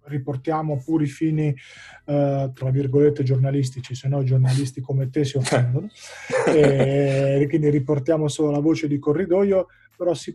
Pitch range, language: 135-155 Hz, Italian